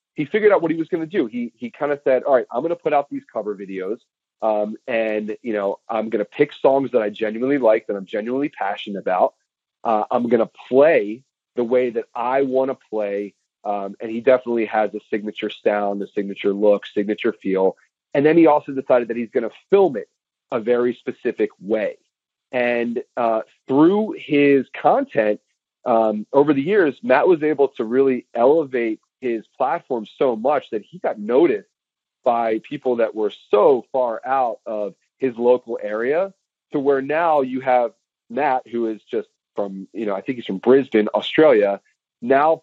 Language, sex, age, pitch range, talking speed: English, male, 30-49, 105-145 Hz, 190 wpm